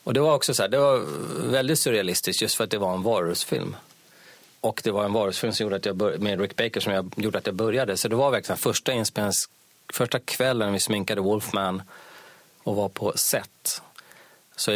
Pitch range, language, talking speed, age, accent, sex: 95-115 Hz, Swedish, 215 wpm, 30-49, native, male